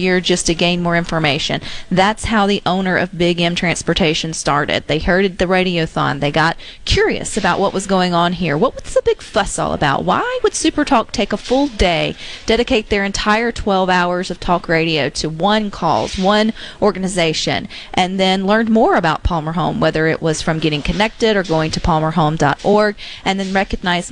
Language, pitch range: English, 170-205 Hz